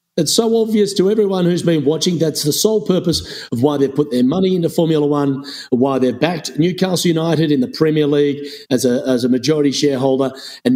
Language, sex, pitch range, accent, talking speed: English, male, 145-200 Hz, Australian, 205 wpm